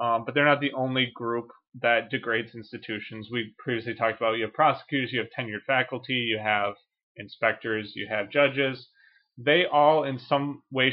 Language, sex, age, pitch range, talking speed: English, male, 30-49, 115-145 Hz, 175 wpm